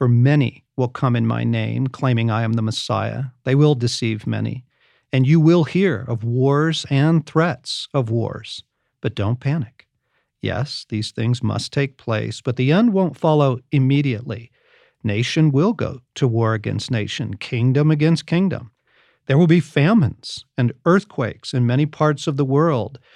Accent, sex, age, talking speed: American, male, 50-69, 165 wpm